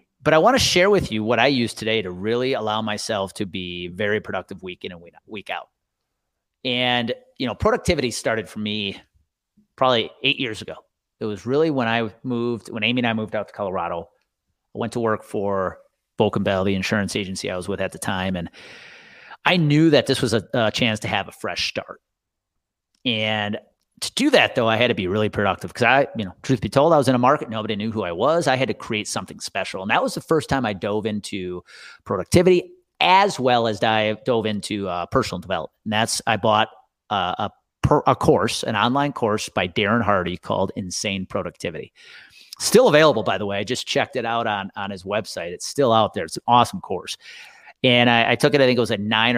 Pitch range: 100-125 Hz